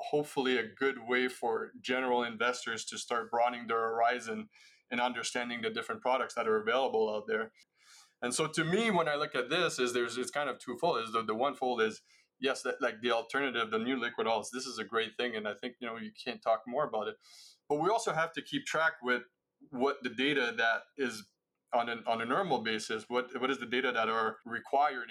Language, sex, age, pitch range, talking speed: English, male, 20-39, 115-145 Hz, 225 wpm